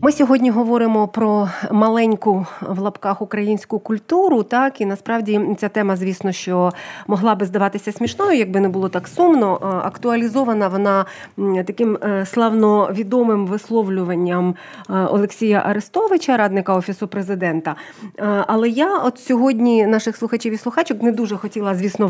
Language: Ukrainian